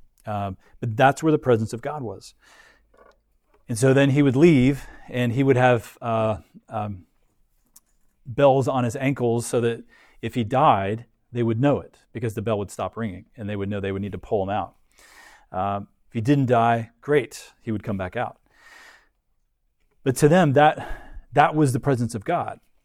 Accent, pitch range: American, 110-135 Hz